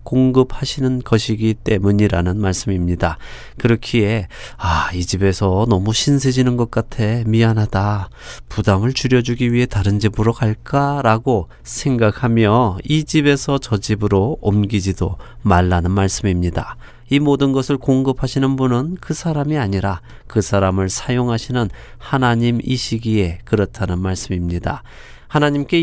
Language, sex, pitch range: Korean, male, 100-130 Hz